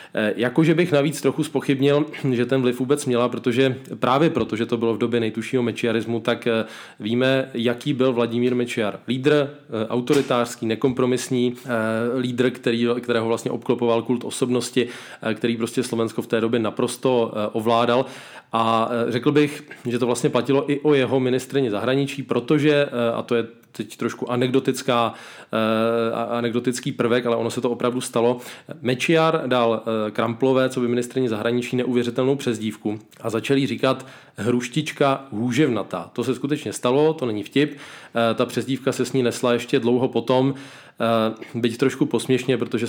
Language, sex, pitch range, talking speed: Czech, male, 115-135 Hz, 145 wpm